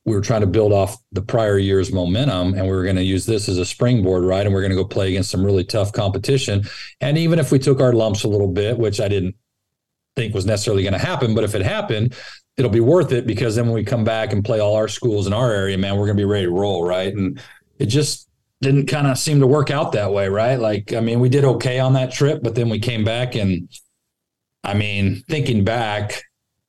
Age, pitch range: 40-59, 95-120 Hz